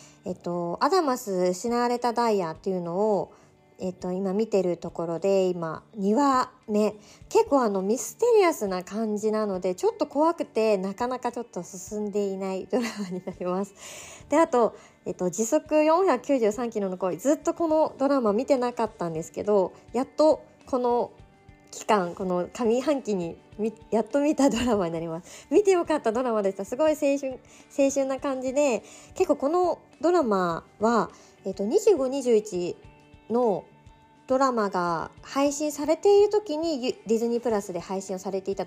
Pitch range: 195-280 Hz